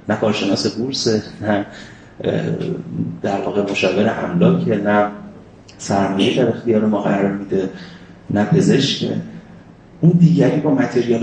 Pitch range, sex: 100-135 Hz, male